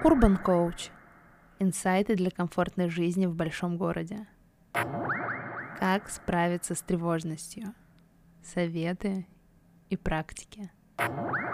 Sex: female